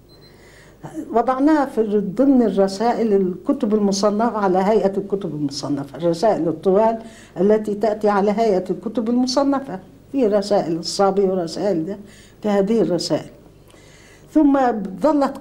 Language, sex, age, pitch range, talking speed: Arabic, female, 60-79, 165-230 Hz, 100 wpm